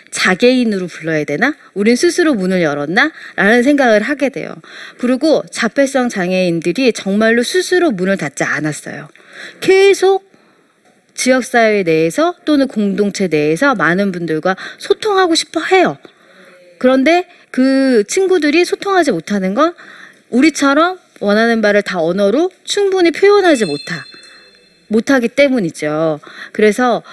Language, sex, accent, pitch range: Korean, female, native, 175-280 Hz